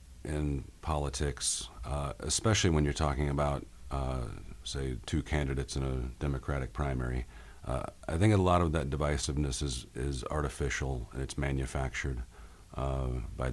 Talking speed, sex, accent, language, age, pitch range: 140 wpm, male, American, English, 50-69, 65-75 Hz